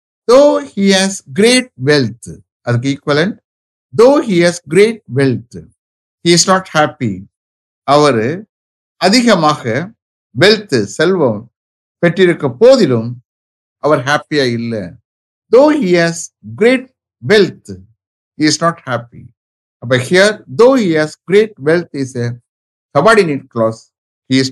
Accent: Indian